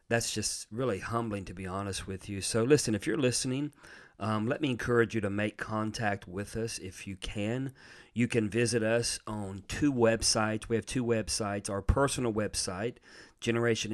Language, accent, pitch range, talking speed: English, American, 100-120 Hz, 180 wpm